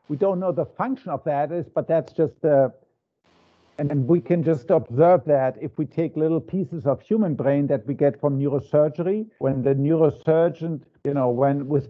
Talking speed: 190 wpm